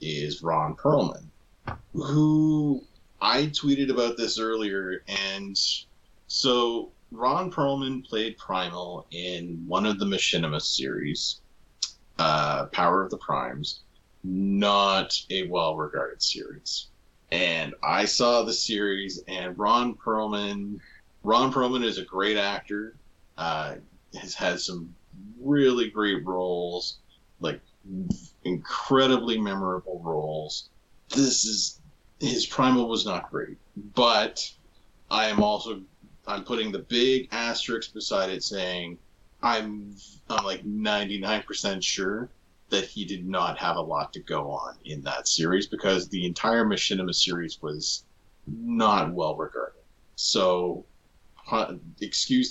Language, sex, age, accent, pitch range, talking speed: English, male, 30-49, American, 90-115 Hz, 120 wpm